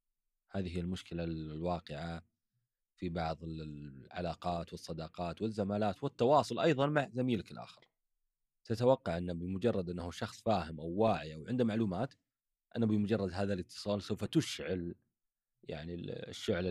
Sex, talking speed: male, 120 wpm